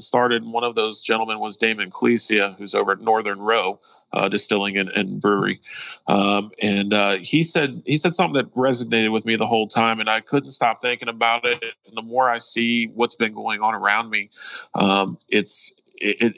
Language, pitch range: English, 105-120 Hz